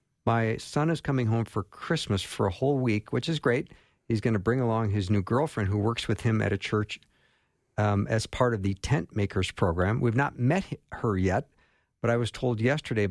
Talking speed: 215 wpm